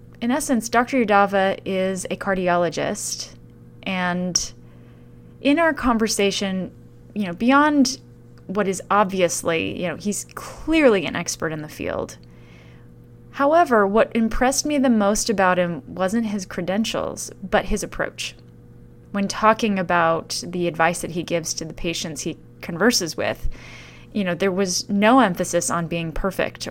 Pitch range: 160-215 Hz